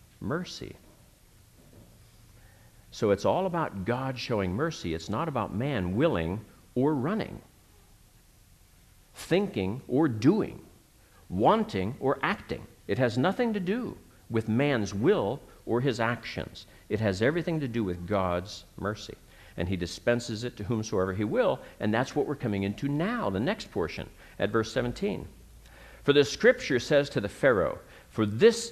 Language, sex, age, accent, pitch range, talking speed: English, male, 60-79, American, 85-140 Hz, 145 wpm